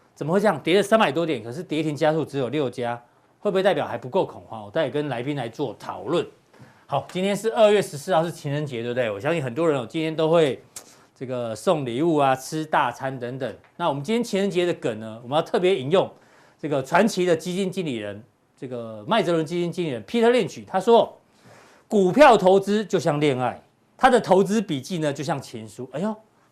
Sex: male